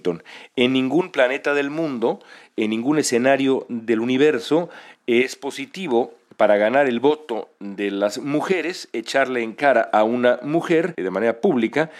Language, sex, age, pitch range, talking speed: Spanish, male, 40-59, 105-140 Hz, 140 wpm